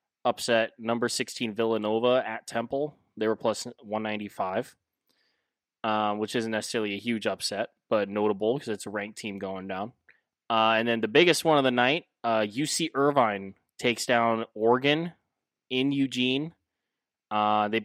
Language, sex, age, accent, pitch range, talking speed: English, male, 20-39, American, 110-130 Hz, 150 wpm